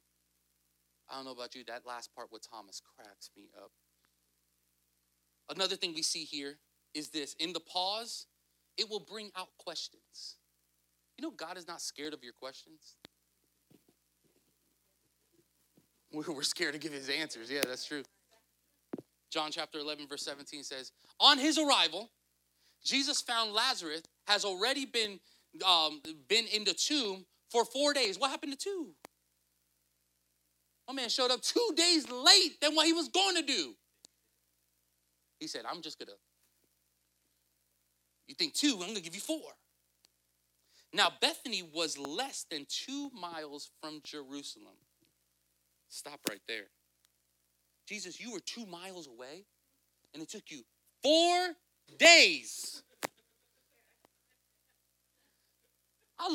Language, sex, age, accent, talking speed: English, male, 30-49, American, 135 wpm